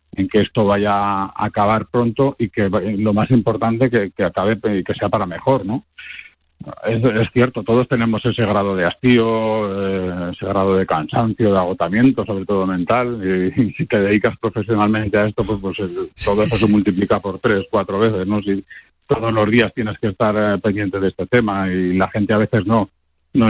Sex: male